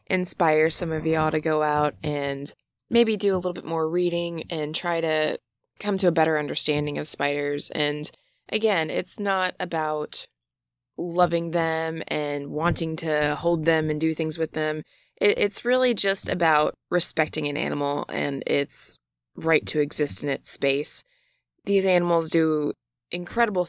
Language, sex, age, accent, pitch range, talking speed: English, female, 20-39, American, 145-175 Hz, 155 wpm